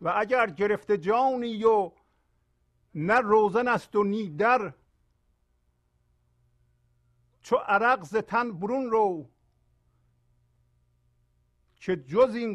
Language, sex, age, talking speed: Persian, male, 50-69, 85 wpm